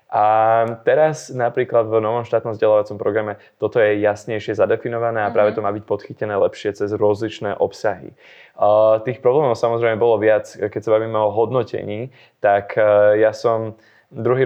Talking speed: 150 wpm